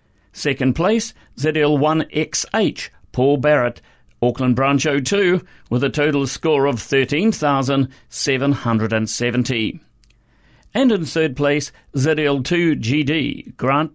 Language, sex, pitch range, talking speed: English, male, 130-160 Hz, 85 wpm